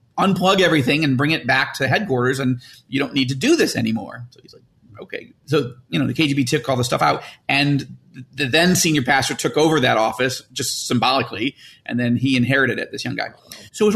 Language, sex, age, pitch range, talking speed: English, male, 40-59, 135-190 Hz, 220 wpm